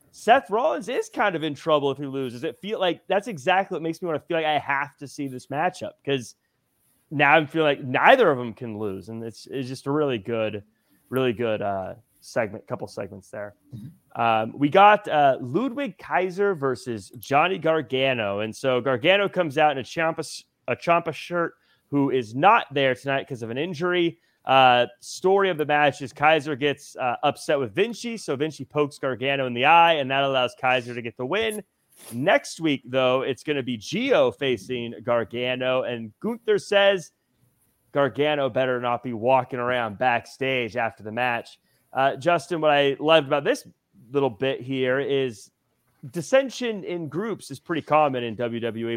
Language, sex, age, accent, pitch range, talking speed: English, male, 30-49, American, 125-165 Hz, 185 wpm